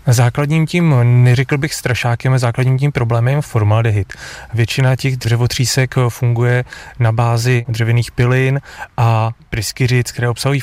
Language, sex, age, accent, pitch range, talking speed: Czech, male, 30-49, native, 110-125 Hz, 130 wpm